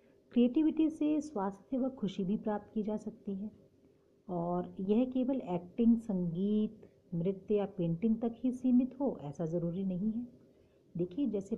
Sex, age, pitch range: female, 50-69, 170-235 Hz